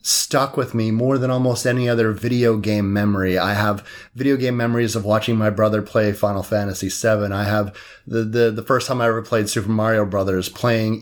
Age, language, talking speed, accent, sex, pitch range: 30-49, English, 205 wpm, American, male, 105-120 Hz